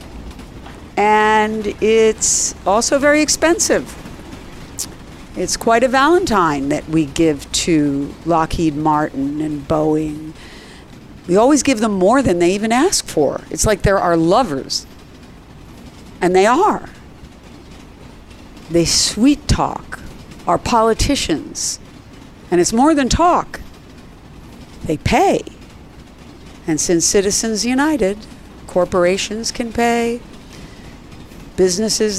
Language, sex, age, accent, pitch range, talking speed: English, female, 50-69, American, 155-230 Hz, 105 wpm